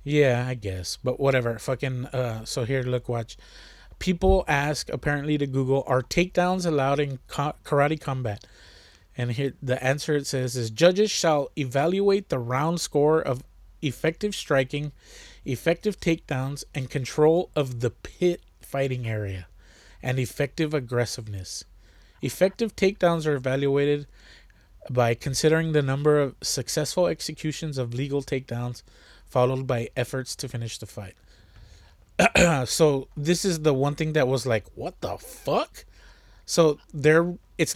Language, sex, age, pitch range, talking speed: English, male, 30-49, 125-160 Hz, 135 wpm